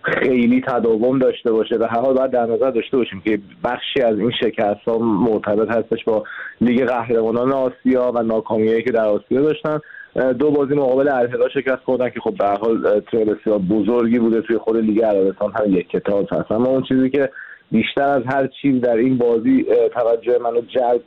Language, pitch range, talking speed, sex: Persian, 115-140 Hz, 180 wpm, male